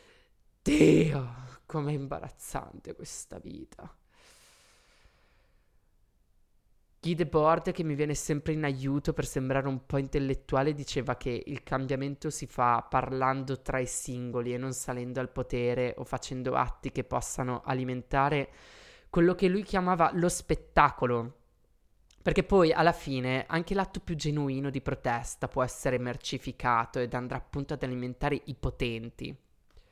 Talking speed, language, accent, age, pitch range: 130 wpm, Italian, native, 20-39, 130-155 Hz